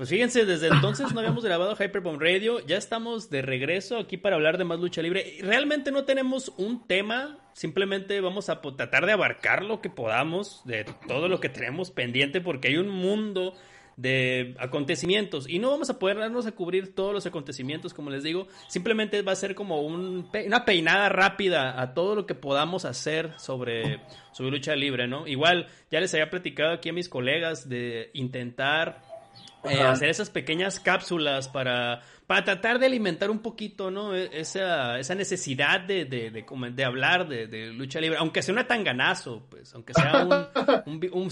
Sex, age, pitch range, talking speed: male, 30-49, 145-195 Hz, 180 wpm